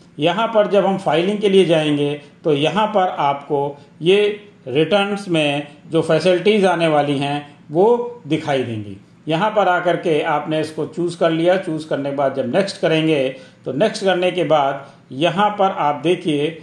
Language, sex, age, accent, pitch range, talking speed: Hindi, male, 50-69, native, 155-200 Hz, 180 wpm